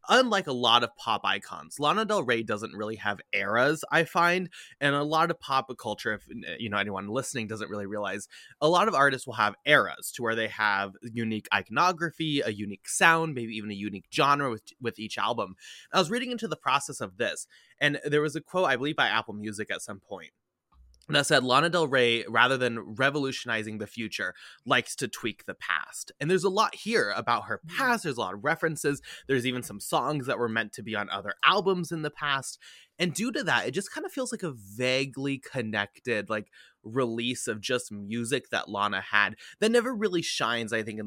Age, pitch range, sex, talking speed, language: 20-39, 105-150 Hz, male, 215 wpm, English